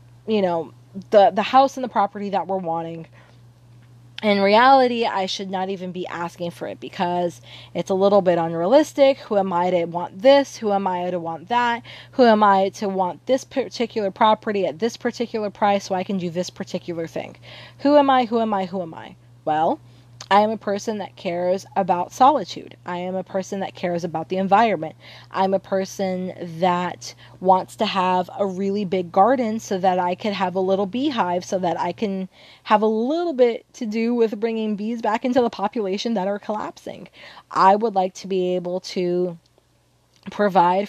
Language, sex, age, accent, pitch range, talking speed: English, female, 20-39, American, 180-215 Hz, 195 wpm